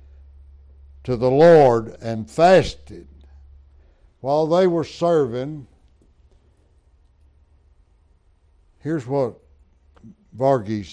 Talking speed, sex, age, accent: 65 wpm, male, 60-79, American